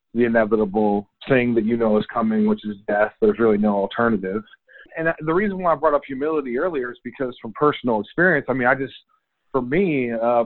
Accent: American